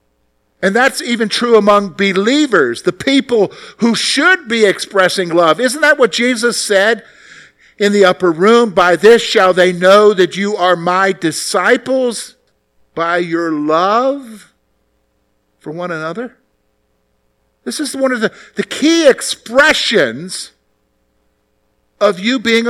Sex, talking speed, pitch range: male, 130 wpm, 160-255 Hz